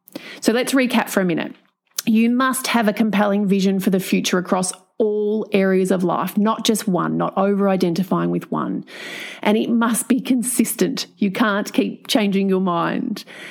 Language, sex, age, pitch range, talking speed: English, female, 30-49, 195-240 Hz, 175 wpm